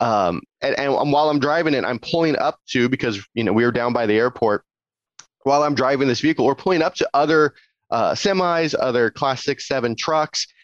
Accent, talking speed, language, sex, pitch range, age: American, 205 wpm, English, male, 120-150 Hz, 30-49